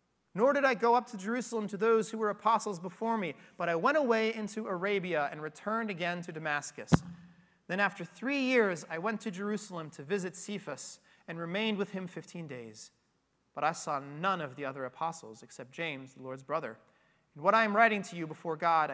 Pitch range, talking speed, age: 150-210 Hz, 205 wpm, 30-49